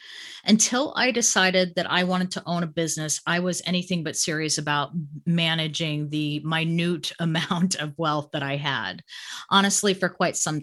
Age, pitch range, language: 30-49, 150-185 Hz, English